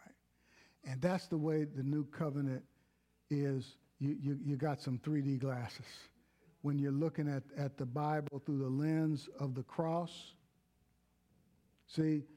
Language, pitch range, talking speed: English, 135-200 Hz, 140 wpm